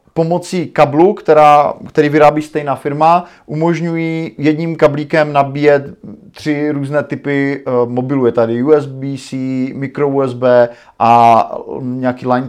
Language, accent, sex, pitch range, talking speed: Czech, native, male, 135-165 Hz, 110 wpm